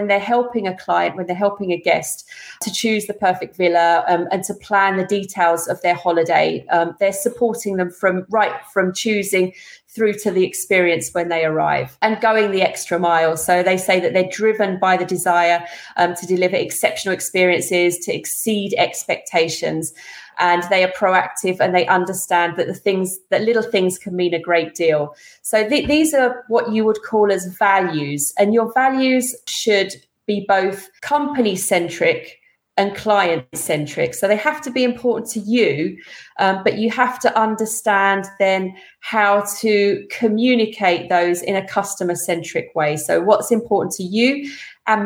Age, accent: 30-49, British